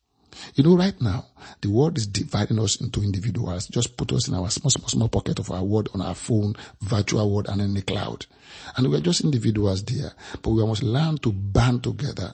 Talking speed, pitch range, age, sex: 215 wpm, 105-135 Hz, 50-69, male